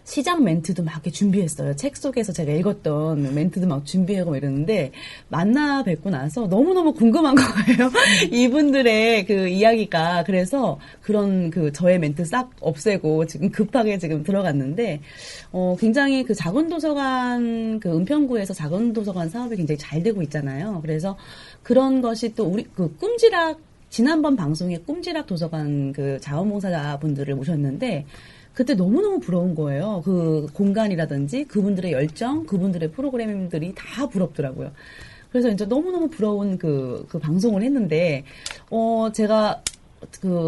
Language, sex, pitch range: Korean, female, 160-240 Hz